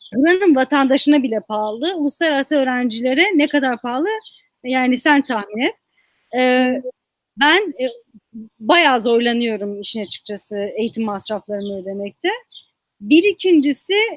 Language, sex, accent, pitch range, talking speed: Turkish, female, native, 235-320 Hz, 105 wpm